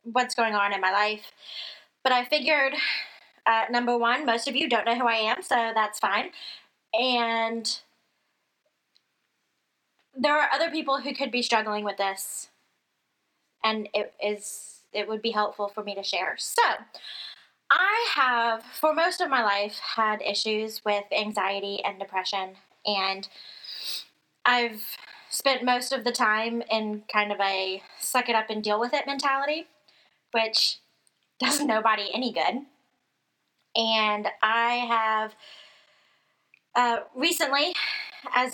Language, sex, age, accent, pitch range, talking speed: English, female, 20-39, American, 210-255 Hz, 130 wpm